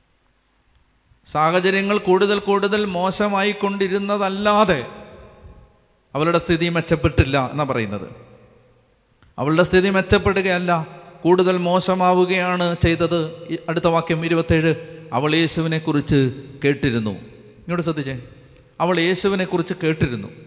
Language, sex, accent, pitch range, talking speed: Malayalam, male, native, 125-180 Hz, 85 wpm